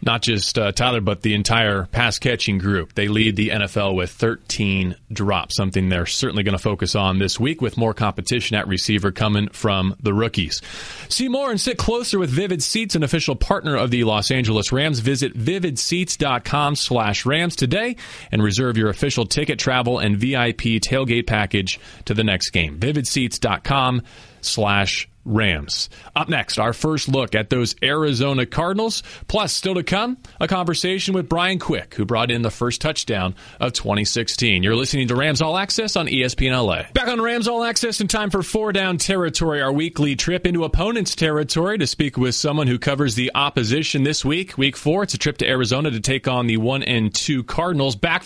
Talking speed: 190 wpm